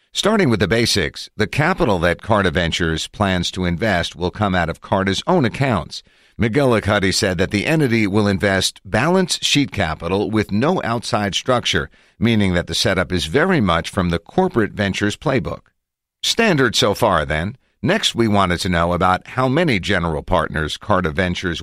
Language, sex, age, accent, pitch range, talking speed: English, male, 50-69, American, 90-115 Hz, 170 wpm